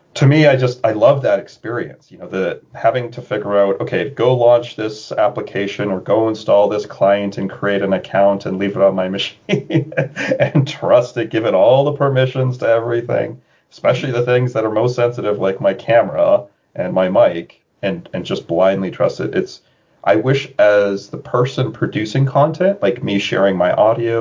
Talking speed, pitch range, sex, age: 190 wpm, 100-135 Hz, male, 30-49